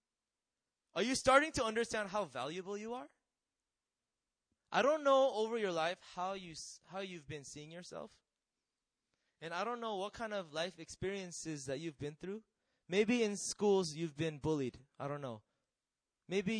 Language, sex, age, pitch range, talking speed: English, male, 20-39, 155-215 Hz, 165 wpm